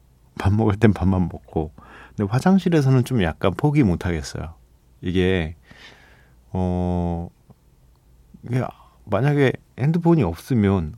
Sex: male